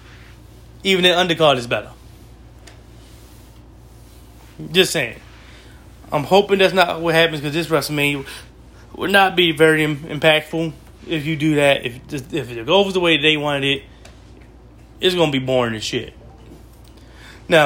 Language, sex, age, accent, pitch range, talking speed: English, male, 20-39, American, 115-140 Hz, 145 wpm